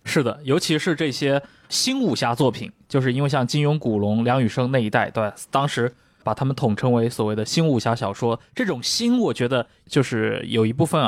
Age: 20-39